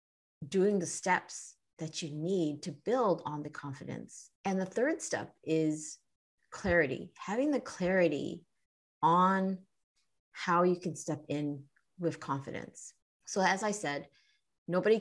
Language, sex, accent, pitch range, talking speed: English, female, American, 150-180 Hz, 130 wpm